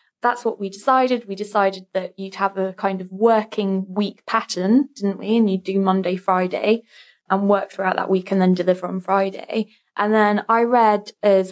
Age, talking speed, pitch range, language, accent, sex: 20-39, 195 wpm, 200-235 Hz, English, British, female